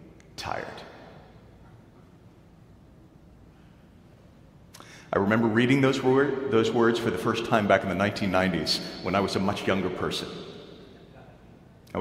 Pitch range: 85-110 Hz